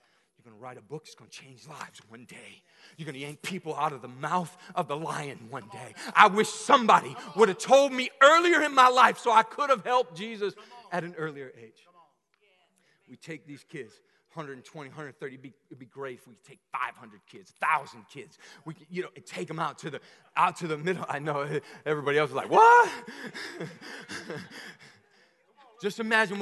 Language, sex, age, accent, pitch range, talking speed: English, male, 30-49, American, 145-195 Hz, 195 wpm